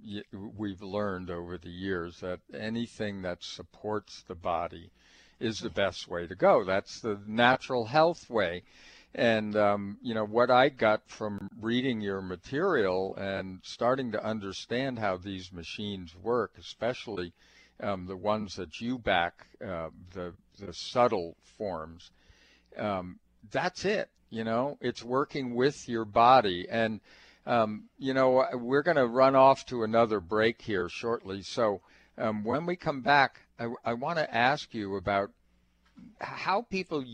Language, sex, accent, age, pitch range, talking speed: English, male, American, 50-69, 95-120 Hz, 145 wpm